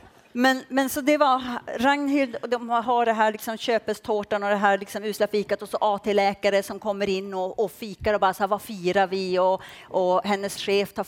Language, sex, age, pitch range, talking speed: Swedish, female, 40-59, 180-245 Hz, 215 wpm